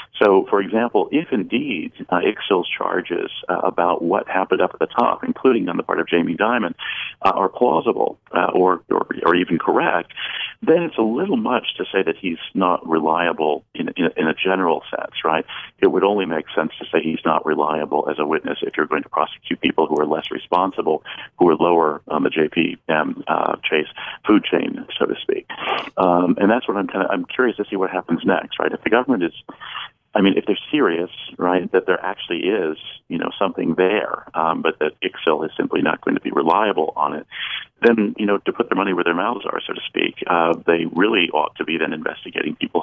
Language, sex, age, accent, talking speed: English, male, 40-59, American, 215 wpm